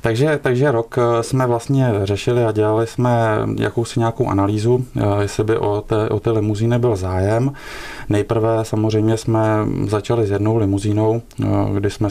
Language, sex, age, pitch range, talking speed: Czech, male, 20-39, 105-115 Hz, 145 wpm